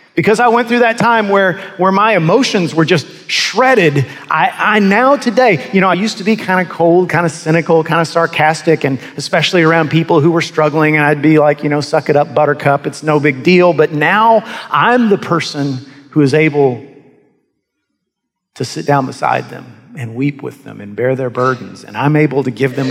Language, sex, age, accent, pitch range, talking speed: English, male, 40-59, American, 140-180 Hz, 210 wpm